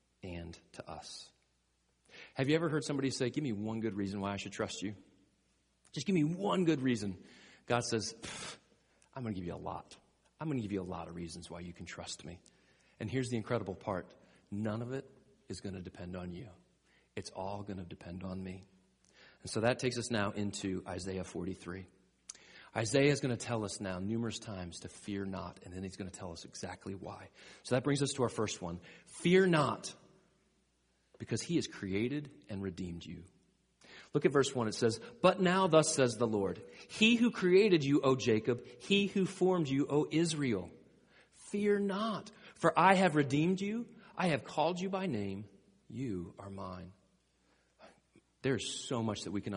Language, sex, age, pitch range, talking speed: English, male, 40-59, 95-150 Hz, 195 wpm